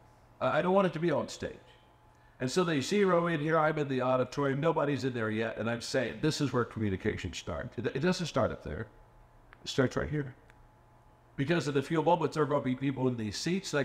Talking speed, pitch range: 235 wpm, 120-170 Hz